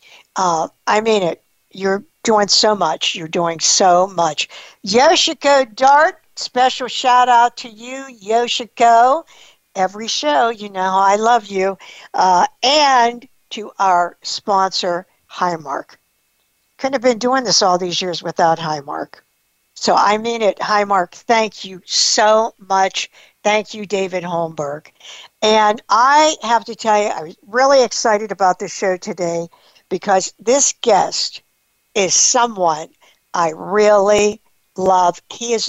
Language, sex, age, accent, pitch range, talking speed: English, female, 60-79, American, 190-240 Hz, 135 wpm